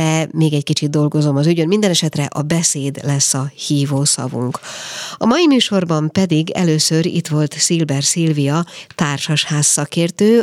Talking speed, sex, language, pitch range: 140 wpm, female, Hungarian, 145-170 Hz